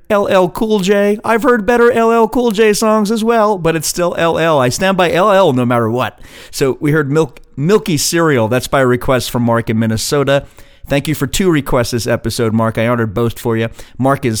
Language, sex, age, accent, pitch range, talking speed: English, male, 40-59, American, 115-160 Hz, 215 wpm